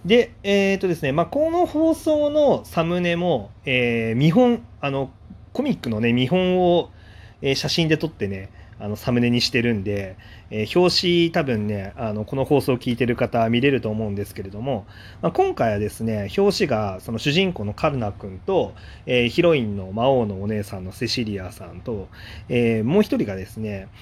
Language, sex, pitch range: Japanese, male, 100-130 Hz